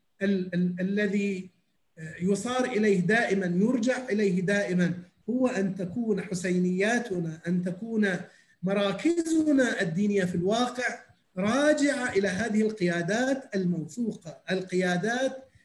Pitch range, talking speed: 185-245 Hz, 95 wpm